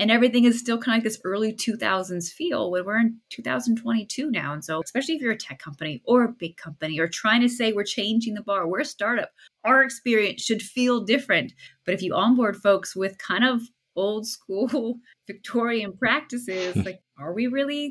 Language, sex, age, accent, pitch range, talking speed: English, female, 20-39, American, 195-260 Hz, 200 wpm